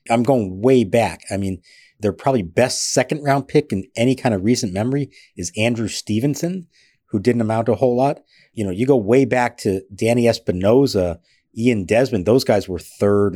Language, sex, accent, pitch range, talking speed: English, male, American, 100-135 Hz, 195 wpm